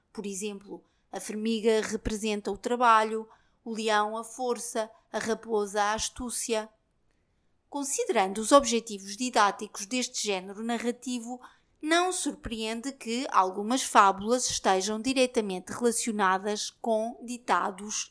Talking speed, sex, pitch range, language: 105 wpm, female, 215-255 Hz, Portuguese